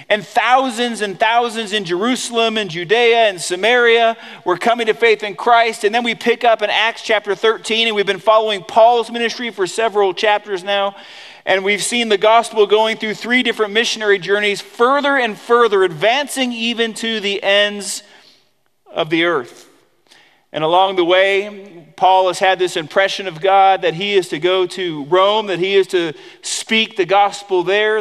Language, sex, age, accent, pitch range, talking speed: English, male, 40-59, American, 185-230 Hz, 180 wpm